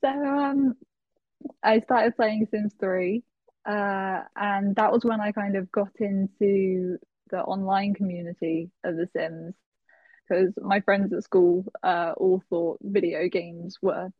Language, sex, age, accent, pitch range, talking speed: English, female, 20-39, British, 185-265 Hz, 145 wpm